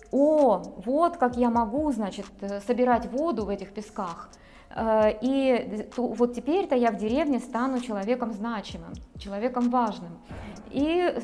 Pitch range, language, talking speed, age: 215-270 Hz, Russian, 125 wpm, 20-39